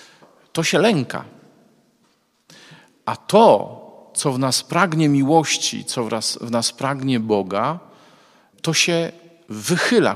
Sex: male